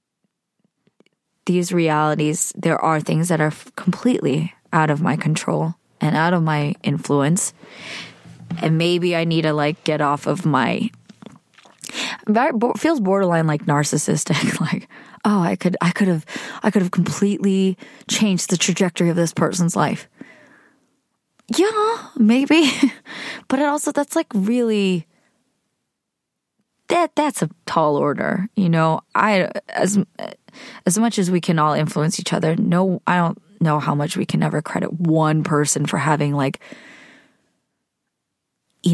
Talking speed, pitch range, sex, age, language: 140 wpm, 160-215 Hz, female, 20-39, English